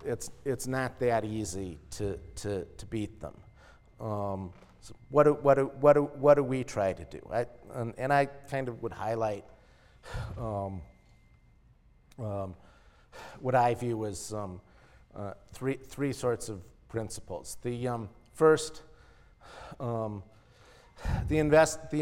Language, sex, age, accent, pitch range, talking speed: English, male, 50-69, American, 105-130 Hz, 140 wpm